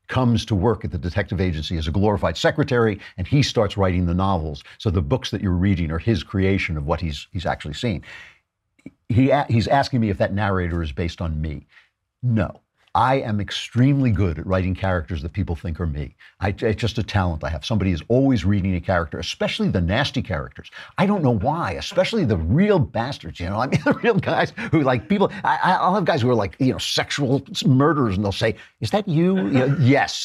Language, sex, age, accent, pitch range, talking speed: English, male, 50-69, American, 90-120 Hz, 220 wpm